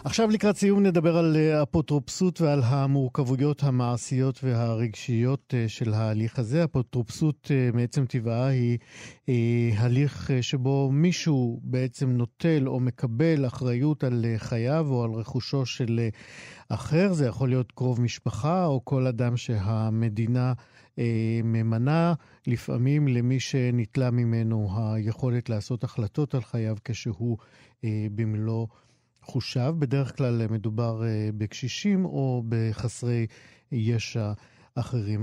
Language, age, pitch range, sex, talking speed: Hebrew, 50-69, 115-140 Hz, male, 105 wpm